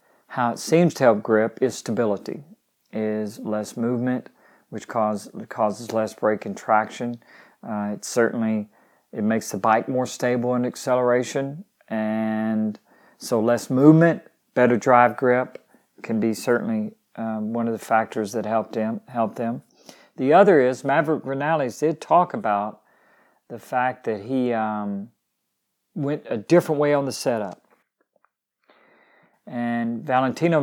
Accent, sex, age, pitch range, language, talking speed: American, male, 50-69, 110-125 Hz, English, 135 wpm